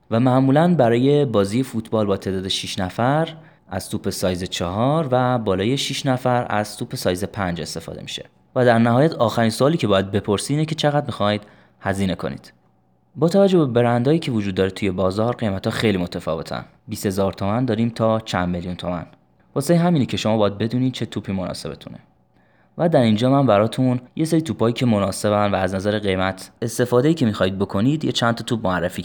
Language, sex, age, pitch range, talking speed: Persian, male, 20-39, 95-125 Hz, 185 wpm